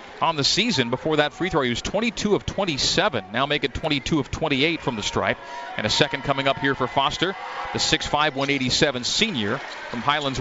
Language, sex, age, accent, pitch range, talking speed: English, male, 40-59, American, 130-160 Hz, 200 wpm